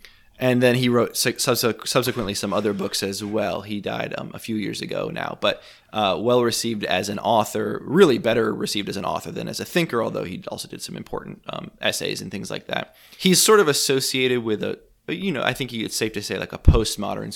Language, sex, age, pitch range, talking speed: English, male, 20-39, 105-125 Hz, 220 wpm